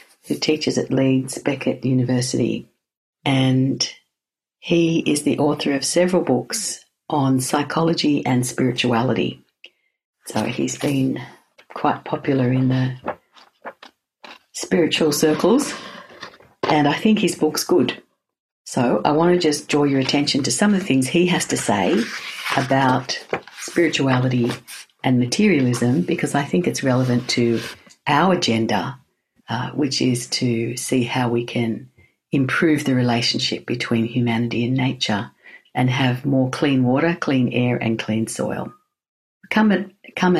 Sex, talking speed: female, 130 wpm